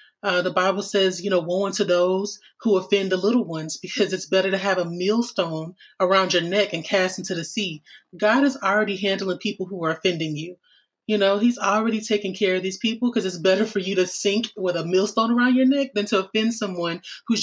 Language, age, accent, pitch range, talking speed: English, 30-49, American, 180-210 Hz, 225 wpm